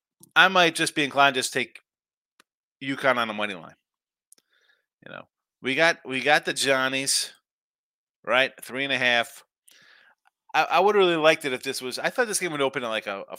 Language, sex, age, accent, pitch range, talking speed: English, male, 30-49, American, 130-175 Hz, 205 wpm